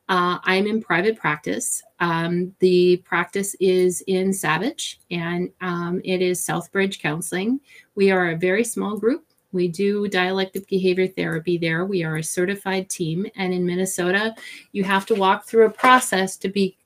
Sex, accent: female, American